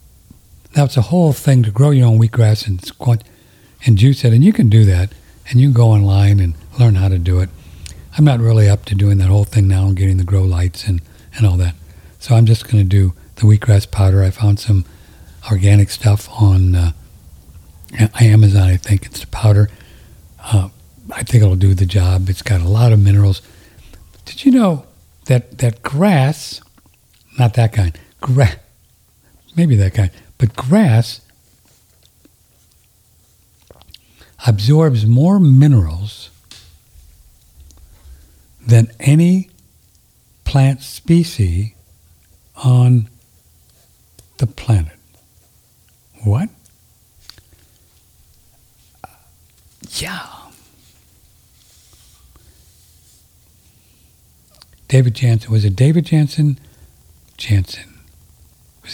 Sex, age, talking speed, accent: male, 60-79, 125 wpm, American